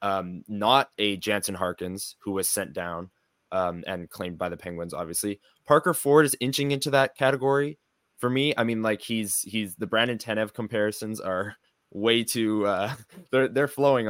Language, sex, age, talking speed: English, male, 20-39, 175 wpm